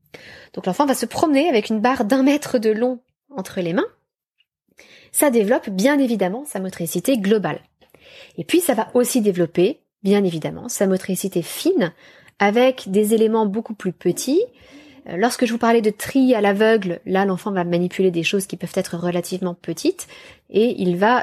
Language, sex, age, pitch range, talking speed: French, female, 20-39, 185-250 Hz, 175 wpm